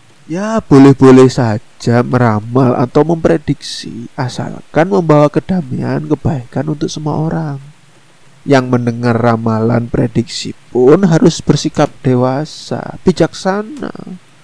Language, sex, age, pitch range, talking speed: Indonesian, male, 30-49, 125-150 Hz, 90 wpm